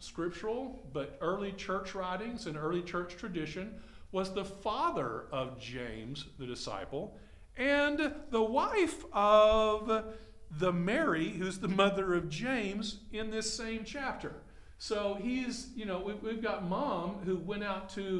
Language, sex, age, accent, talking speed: English, male, 50-69, American, 140 wpm